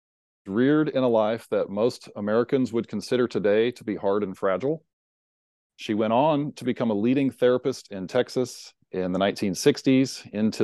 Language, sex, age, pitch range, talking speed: English, male, 40-59, 95-120 Hz, 165 wpm